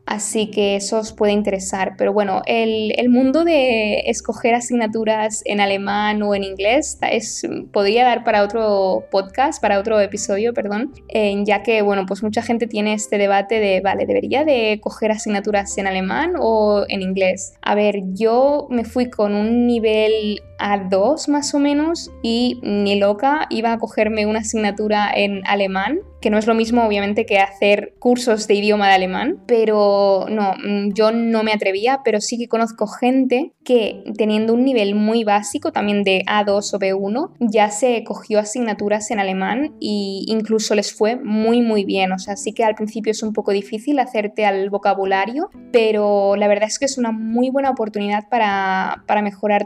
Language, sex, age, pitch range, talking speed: Spanish, female, 10-29, 205-235 Hz, 175 wpm